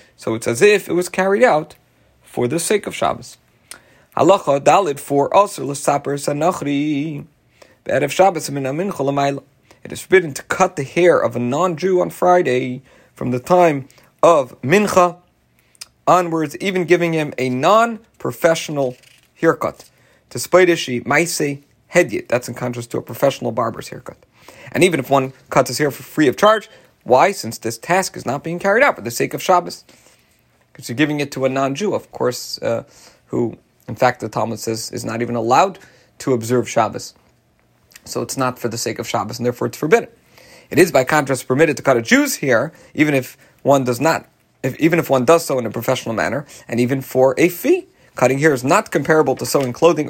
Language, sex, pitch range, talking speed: English, male, 125-175 Hz, 170 wpm